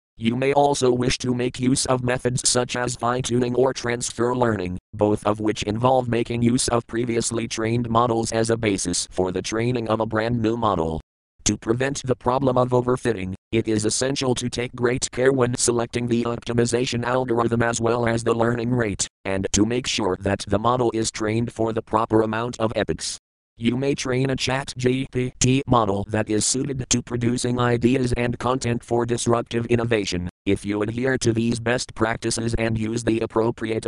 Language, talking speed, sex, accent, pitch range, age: English, 185 wpm, male, American, 110-125 Hz, 40-59